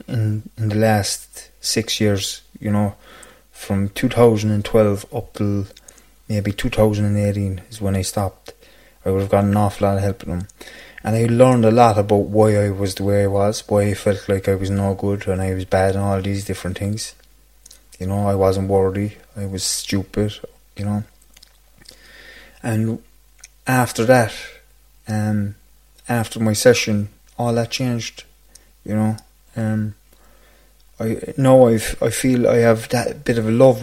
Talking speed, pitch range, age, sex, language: 165 wpm, 100-125 Hz, 20-39, male, English